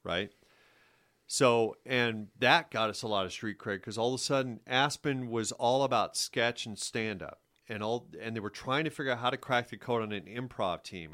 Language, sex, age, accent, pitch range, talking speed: English, male, 40-59, American, 105-130 Hz, 220 wpm